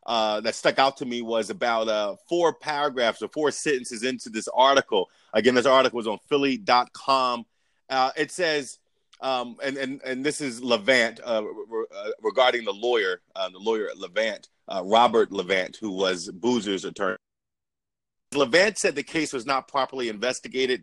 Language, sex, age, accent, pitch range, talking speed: English, male, 30-49, American, 125-170 Hz, 175 wpm